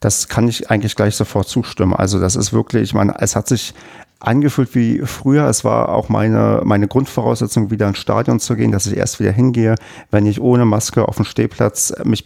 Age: 40-59